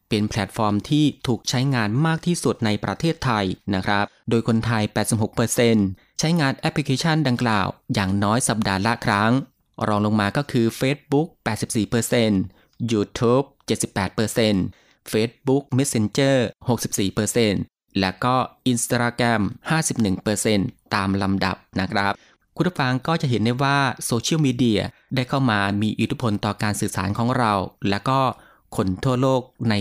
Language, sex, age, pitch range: Thai, male, 20-39, 105-130 Hz